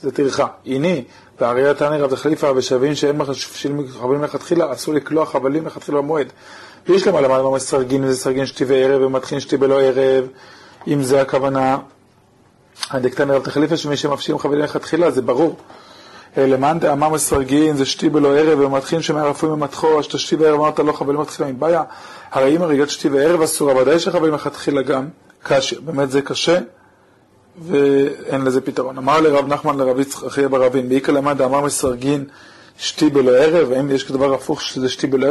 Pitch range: 135-150 Hz